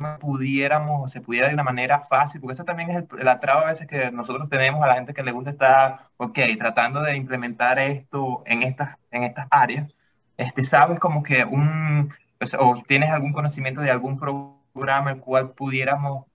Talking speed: 200 wpm